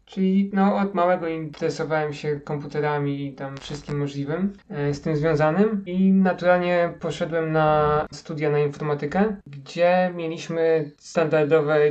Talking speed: 125 wpm